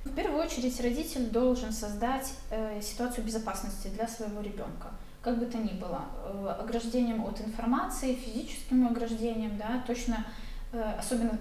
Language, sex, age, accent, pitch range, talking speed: Russian, female, 20-39, native, 215-245 Hz, 140 wpm